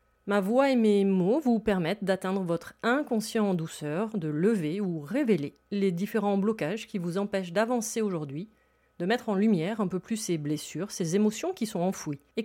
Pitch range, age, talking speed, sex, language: 165-225 Hz, 40-59, 190 wpm, female, French